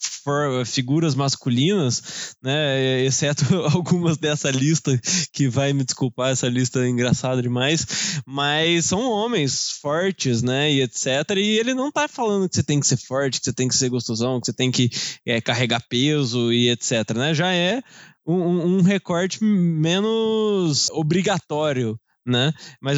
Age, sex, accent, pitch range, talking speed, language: 10-29, male, Brazilian, 130-175 Hz, 160 wpm, Portuguese